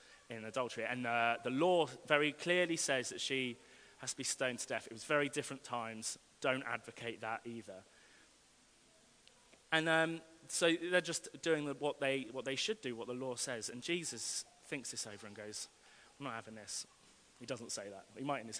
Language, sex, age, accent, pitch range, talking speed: English, male, 30-49, British, 120-170 Hz, 195 wpm